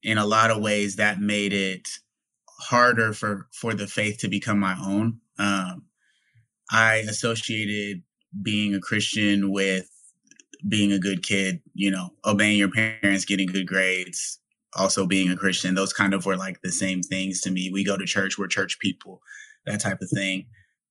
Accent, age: American, 20-39